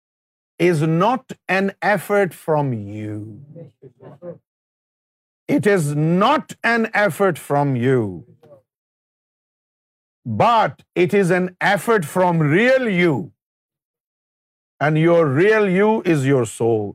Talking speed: 100 wpm